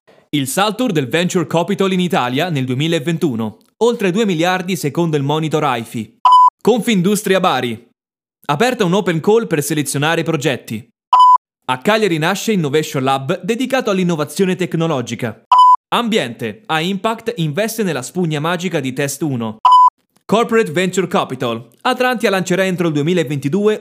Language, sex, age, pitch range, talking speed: Italian, male, 20-39, 140-215 Hz, 130 wpm